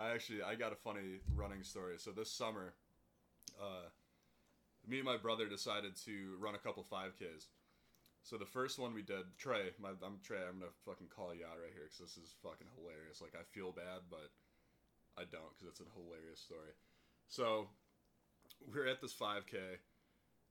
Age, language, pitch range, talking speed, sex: 20-39, English, 90-110 Hz, 185 wpm, male